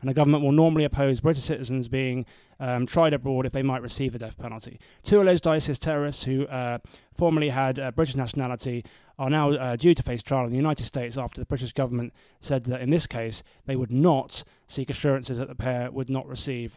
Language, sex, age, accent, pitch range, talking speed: English, male, 20-39, British, 125-150 Hz, 220 wpm